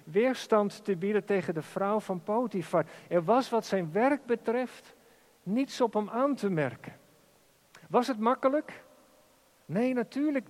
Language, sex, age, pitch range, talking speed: Dutch, male, 50-69, 200-240 Hz, 145 wpm